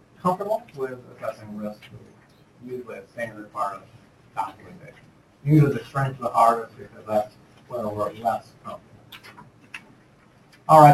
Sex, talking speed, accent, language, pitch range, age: male, 125 wpm, American, English, 120-160 Hz, 50-69